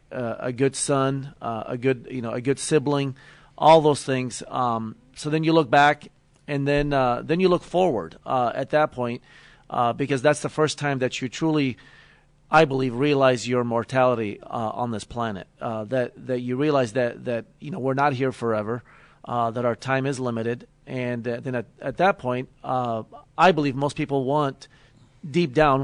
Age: 40-59